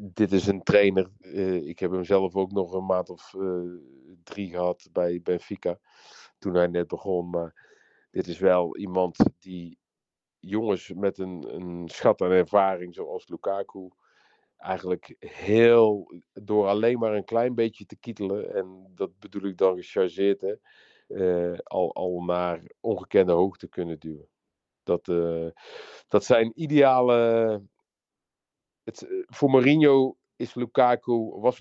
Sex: male